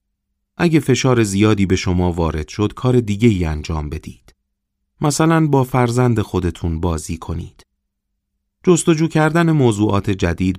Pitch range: 85-110 Hz